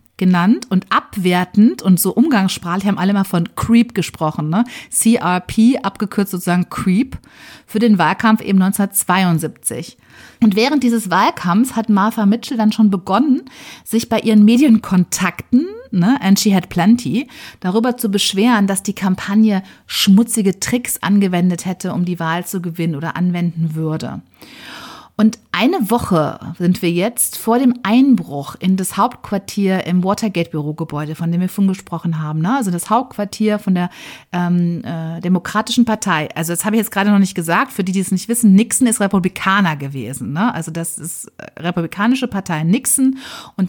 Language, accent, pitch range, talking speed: German, German, 175-220 Hz, 160 wpm